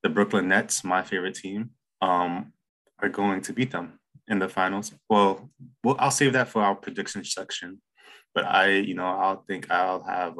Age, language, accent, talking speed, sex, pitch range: 20-39, English, American, 185 wpm, male, 95-105 Hz